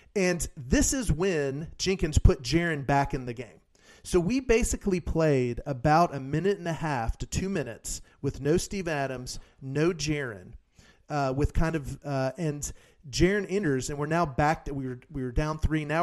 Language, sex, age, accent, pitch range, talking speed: English, male, 40-59, American, 130-165 Hz, 180 wpm